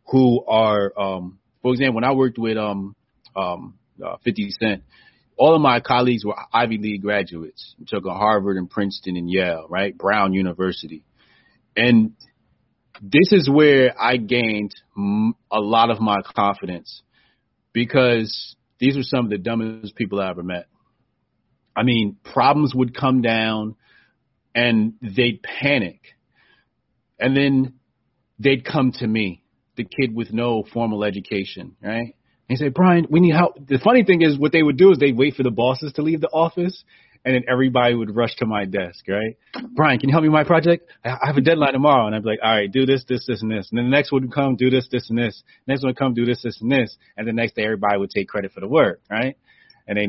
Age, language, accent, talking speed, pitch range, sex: 30-49, English, American, 205 wpm, 105-130 Hz, male